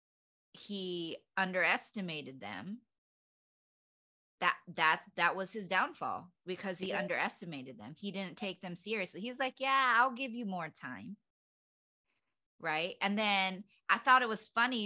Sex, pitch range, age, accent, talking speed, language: female, 170-210 Hz, 20-39, American, 135 wpm, English